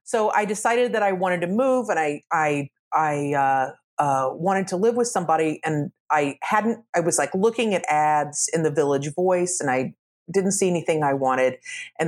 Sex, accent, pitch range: female, American, 150-195 Hz